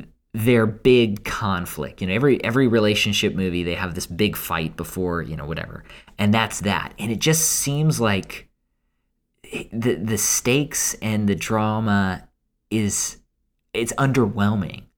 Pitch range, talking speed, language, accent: 95-125 Hz, 145 wpm, English, American